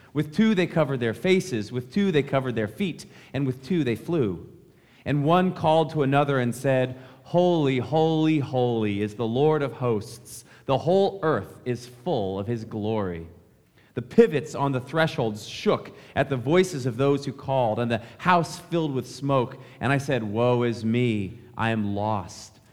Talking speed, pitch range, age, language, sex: 180 wpm, 110-145 Hz, 40-59, English, male